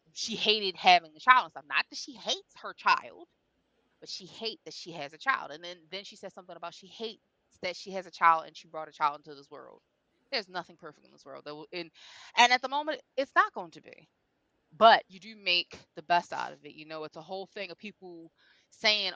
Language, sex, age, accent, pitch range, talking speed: English, female, 20-39, American, 170-230 Hz, 240 wpm